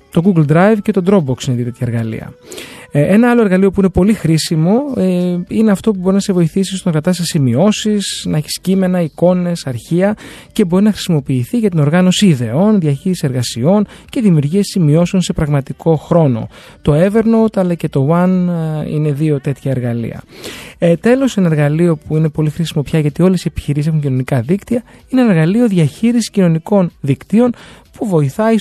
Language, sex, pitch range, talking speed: Greek, male, 145-190 Hz, 175 wpm